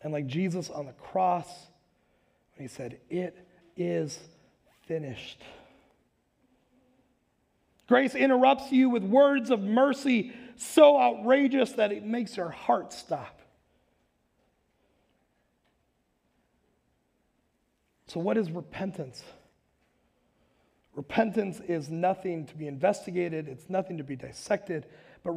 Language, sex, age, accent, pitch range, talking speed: English, male, 30-49, American, 165-240 Hz, 100 wpm